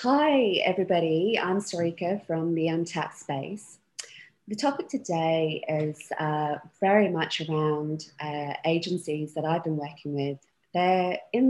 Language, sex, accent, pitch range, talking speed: English, female, British, 155-195 Hz, 130 wpm